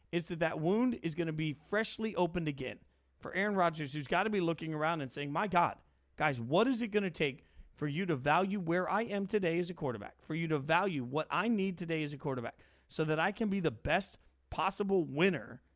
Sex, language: male, English